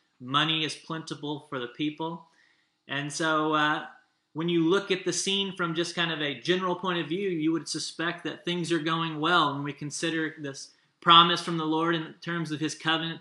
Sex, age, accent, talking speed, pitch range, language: male, 20-39, American, 205 wpm, 145-170 Hz, English